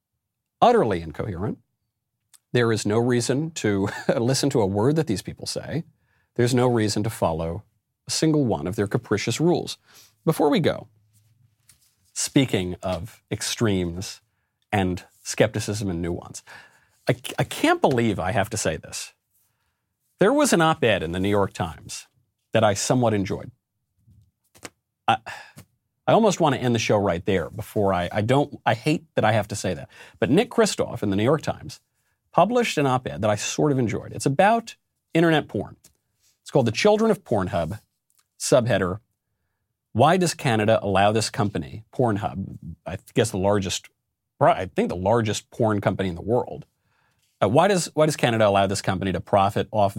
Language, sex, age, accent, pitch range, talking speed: English, male, 40-59, American, 100-125 Hz, 165 wpm